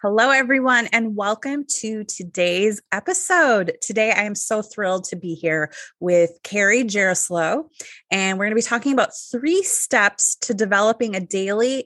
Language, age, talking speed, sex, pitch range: English, 20-39, 155 wpm, female, 180-245 Hz